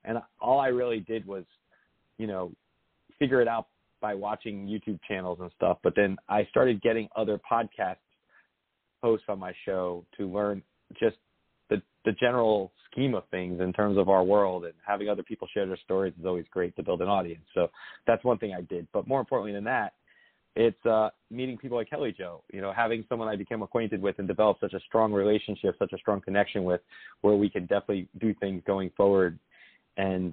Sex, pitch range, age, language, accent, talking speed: male, 95-110 Hz, 30-49, English, American, 200 wpm